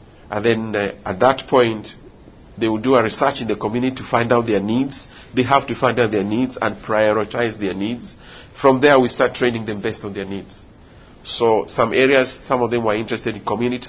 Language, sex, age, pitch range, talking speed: English, male, 50-69, 105-130 Hz, 215 wpm